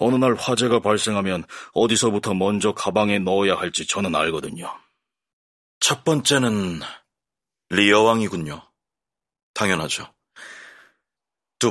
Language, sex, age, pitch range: Korean, male, 40-59, 110-140 Hz